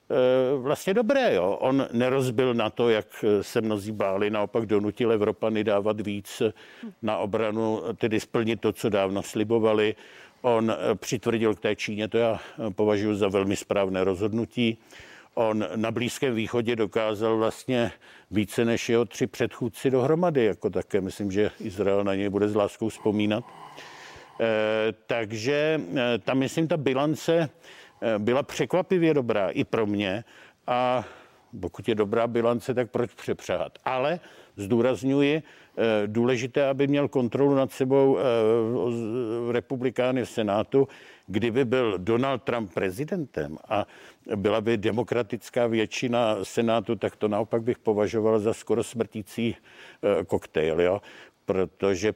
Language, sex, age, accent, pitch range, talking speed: Czech, male, 50-69, native, 105-125 Hz, 130 wpm